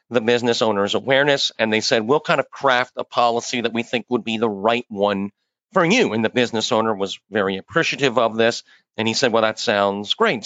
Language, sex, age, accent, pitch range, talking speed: English, male, 40-59, American, 110-140 Hz, 225 wpm